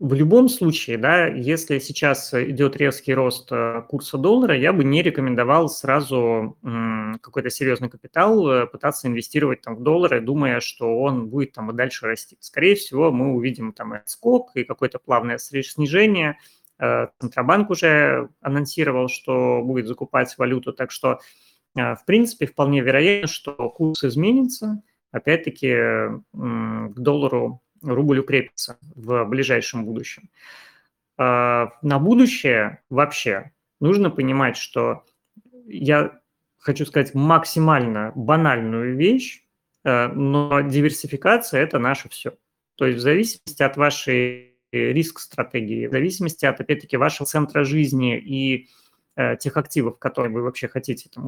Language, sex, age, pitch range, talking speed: Russian, male, 30-49, 125-155 Hz, 120 wpm